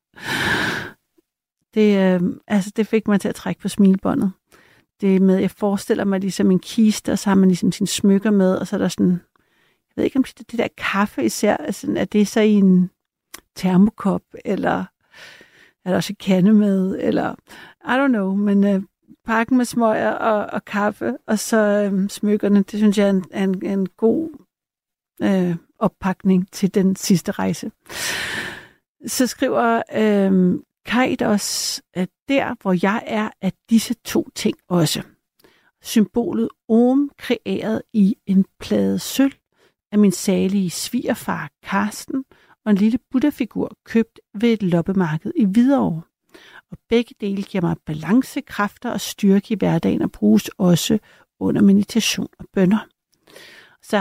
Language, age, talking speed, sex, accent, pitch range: Danish, 60-79, 160 wpm, female, native, 190-230 Hz